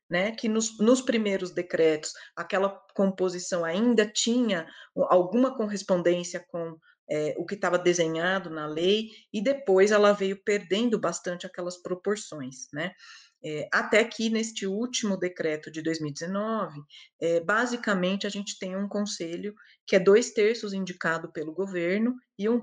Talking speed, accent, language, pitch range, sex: 135 wpm, Brazilian, Portuguese, 165-210 Hz, female